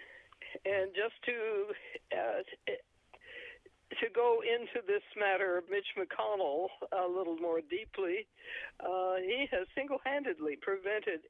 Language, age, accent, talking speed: English, 60-79, American, 110 wpm